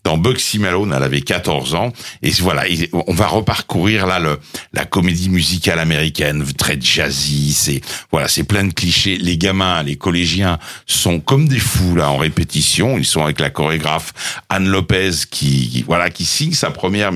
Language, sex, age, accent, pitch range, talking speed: French, male, 60-79, French, 80-105 Hz, 175 wpm